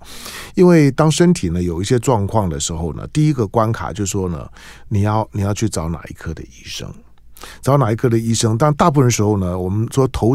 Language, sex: Chinese, male